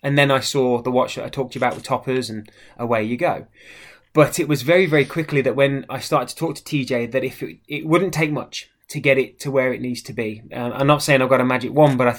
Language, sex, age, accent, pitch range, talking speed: English, male, 20-39, British, 125-145 Hz, 290 wpm